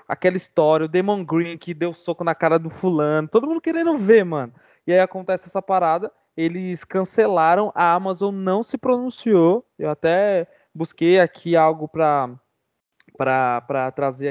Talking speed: 150 wpm